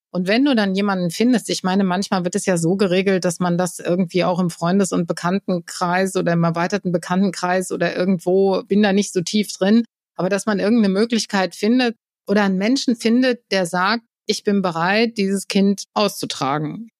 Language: German